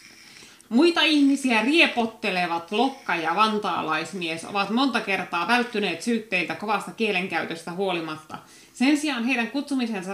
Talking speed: 105 wpm